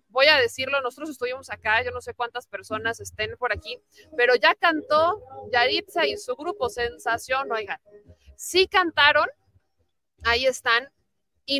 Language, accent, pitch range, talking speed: Spanish, Mexican, 235-305 Hz, 145 wpm